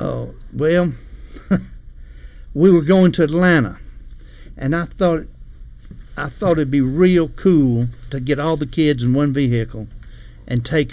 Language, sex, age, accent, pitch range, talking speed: English, male, 60-79, American, 110-145 Hz, 150 wpm